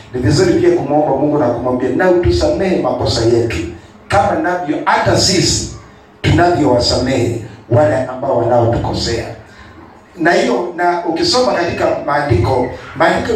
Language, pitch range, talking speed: English, 115-165 Hz, 120 wpm